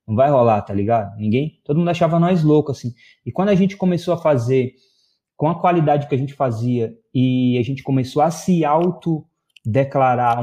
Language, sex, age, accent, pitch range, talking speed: Portuguese, male, 20-39, Brazilian, 115-155 Hz, 190 wpm